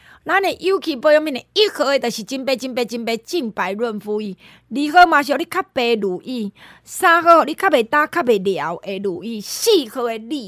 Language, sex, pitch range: Chinese, female, 245-335 Hz